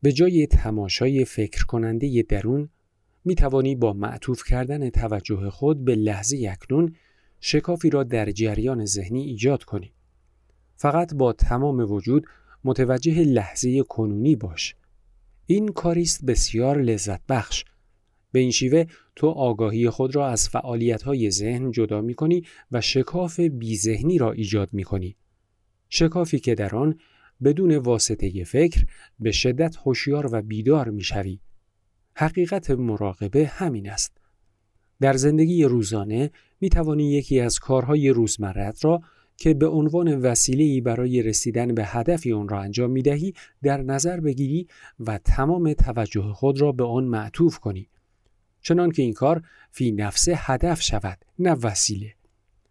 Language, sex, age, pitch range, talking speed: Persian, male, 40-59, 105-145 Hz, 135 wpm